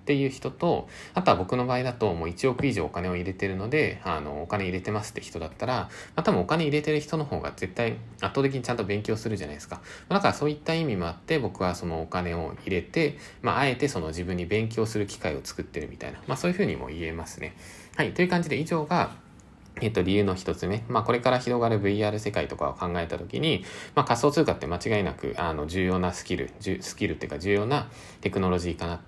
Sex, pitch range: male, 90-130 Hz